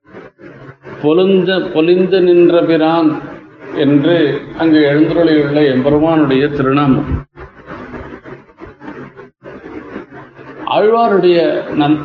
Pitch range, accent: 155-180 Hz, native